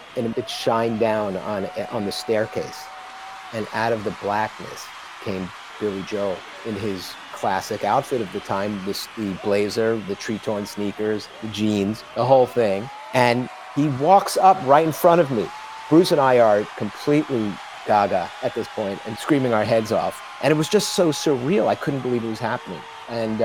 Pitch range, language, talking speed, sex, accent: 105-140 Hz, English, 180 wpm, male, American